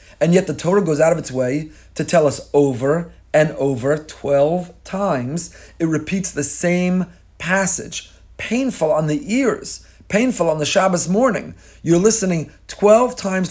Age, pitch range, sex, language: 30-49, 145-210 Hz, male, English